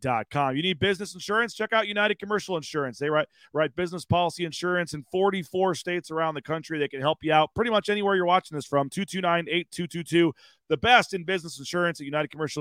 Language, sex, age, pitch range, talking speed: English, male, 30-49, 155-185 Hz, 205 wpm